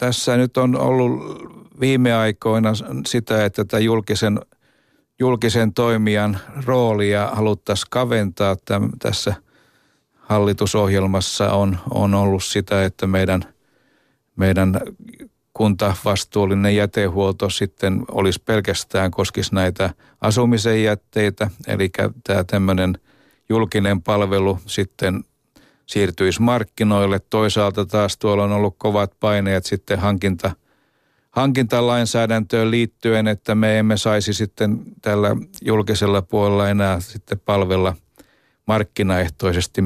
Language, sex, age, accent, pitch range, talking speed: Finnish, male, 50-69, native, 100-110 Hz, 100 wpm